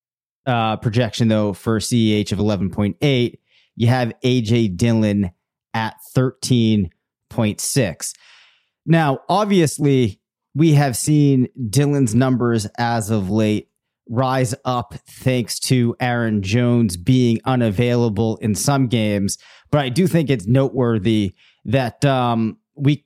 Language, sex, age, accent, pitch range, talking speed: English, male, 30-49, American, 105-130 Hz, 110 wpm